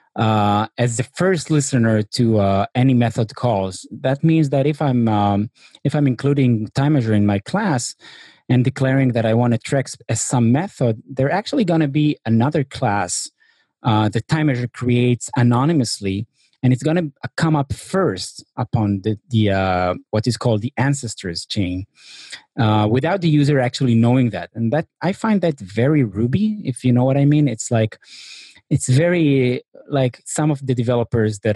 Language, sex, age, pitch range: English, male, 30-49, 110-140 Hz